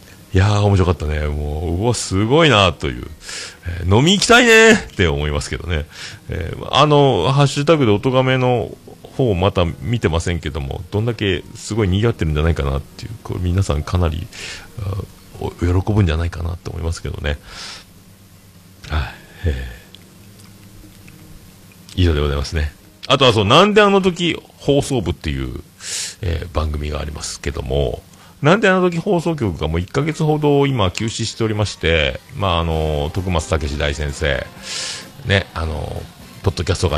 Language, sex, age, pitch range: Japanese, male, 40-59, 85-120 Hz